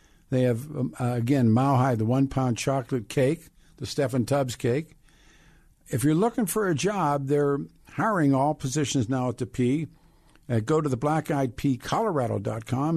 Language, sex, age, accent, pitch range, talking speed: English, male, 50-69, American, 120-150 Hz, 155 wpm